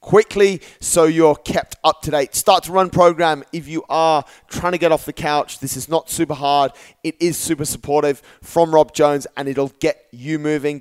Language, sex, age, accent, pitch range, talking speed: English, male, 30-49, British, 140-170 Hz, 205 wpm